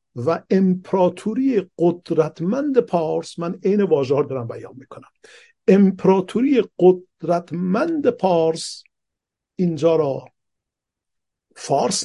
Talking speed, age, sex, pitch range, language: 80 wpm, 50-69, male, 135-195 Hz, Persian